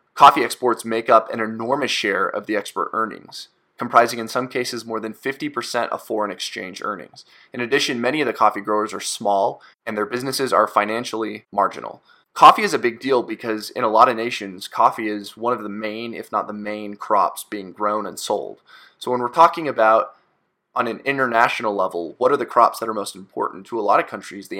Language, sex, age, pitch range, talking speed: English, male, 20-39, 105-120 Hz, 210 wpm